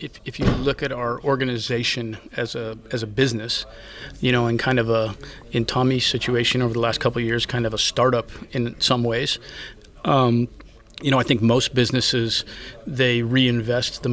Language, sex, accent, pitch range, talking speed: English, male, American, 115-130 Hz, 185 wpm